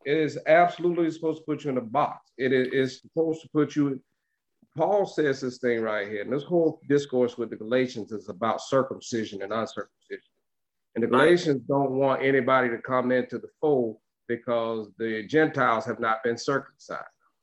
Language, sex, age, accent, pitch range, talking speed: English, male, 40-59, American, 120-155 Hz, 180 wpm